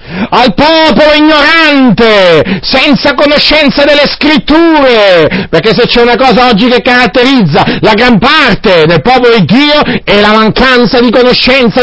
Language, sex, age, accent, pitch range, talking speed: Italian, male, 50-69, native, 225-280 Hz, 135 wpm